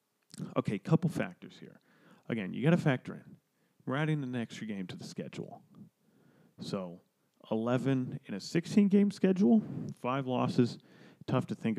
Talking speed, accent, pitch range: 155 wpm, American, 110-180 Hz